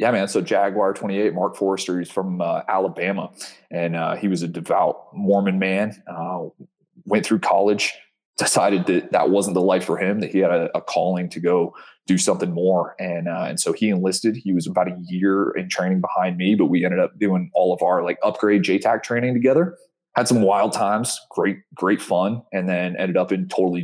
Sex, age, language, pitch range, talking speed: male, 20-39, English, 90-105 Hz, 210 wpm